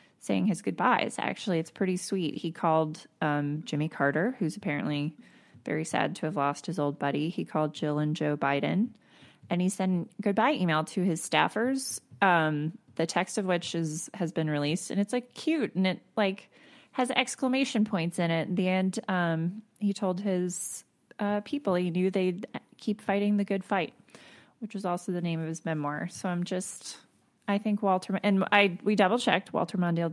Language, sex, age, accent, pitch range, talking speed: English, female, 20-39, American, 155-205 Hz, 190 wpm